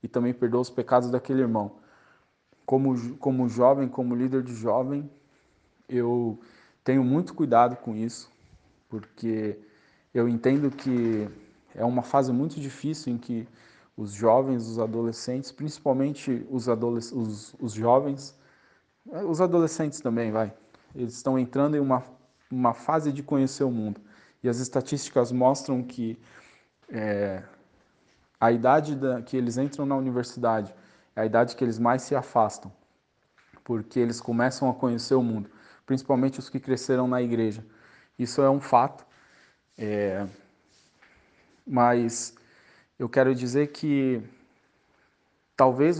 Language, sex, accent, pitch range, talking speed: Portuguese, male, Brazilian, 115-135 Hz, 130 wpm